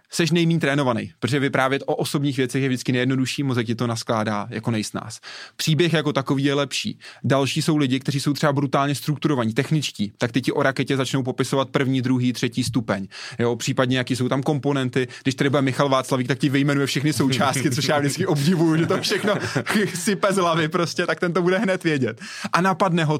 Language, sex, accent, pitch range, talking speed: Czech, male, native, 130-155 Hz, 200 wpm